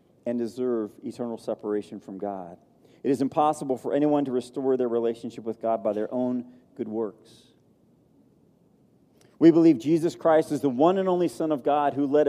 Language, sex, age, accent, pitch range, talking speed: English, male, 40-59, American, 125-175 Hz, 175 wpm